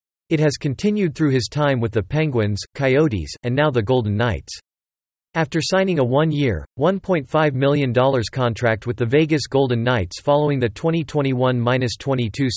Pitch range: 110-150 Hz